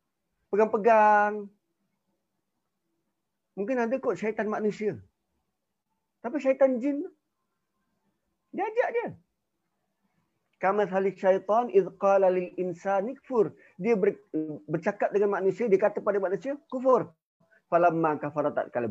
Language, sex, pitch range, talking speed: Malay, male, 130-195 Hz, 90 wpm